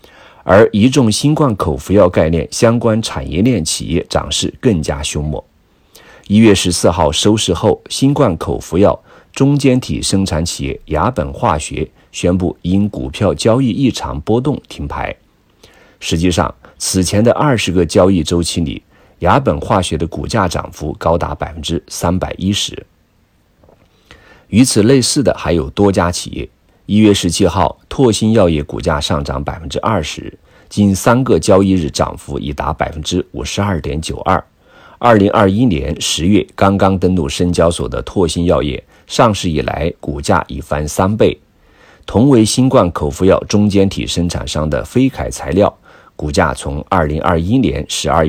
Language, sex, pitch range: Chinese, male, 75-105 Hz